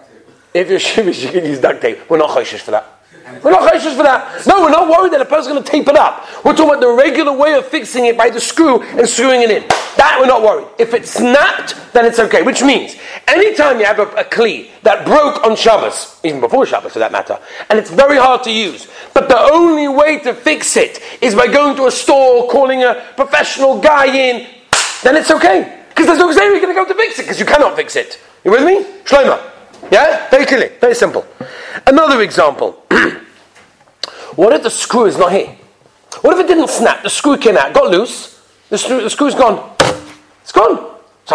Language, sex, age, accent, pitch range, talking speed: English, male, 40-59, British, 245-355 Hz, 225 wpm